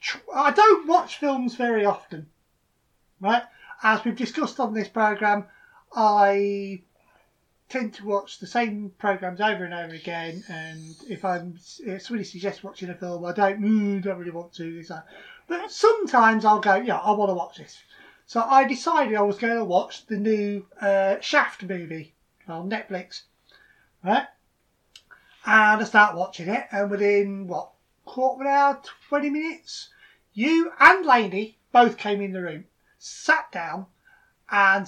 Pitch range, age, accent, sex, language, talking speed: 195-275 Hz, 30-49, British, male, English, 160 wpm